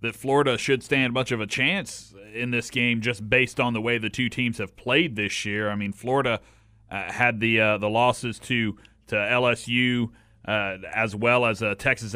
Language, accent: English, American